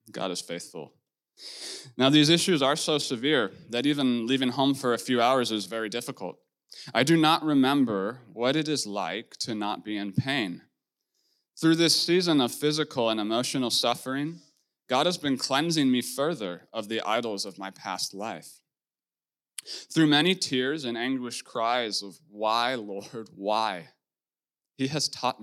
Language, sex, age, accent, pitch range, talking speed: English, male, 20-39, American, 115-150 Hz, 160 wpm